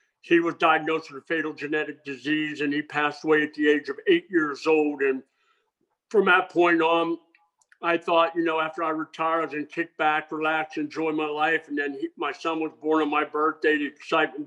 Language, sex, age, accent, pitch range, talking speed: English, male, 50-69, American, 150-165 Hz, 210 wpm